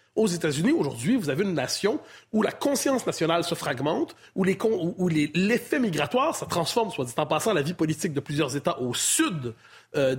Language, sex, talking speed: French, male, 205 wpm